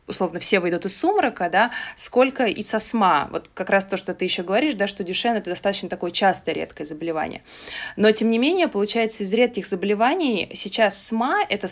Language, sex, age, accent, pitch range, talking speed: Russian, female, 20-39, native, 180-225 Hz, 195 wpm